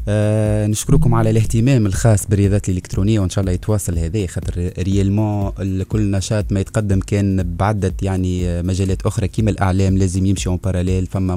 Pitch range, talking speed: 95-110 Hz, 155 wpm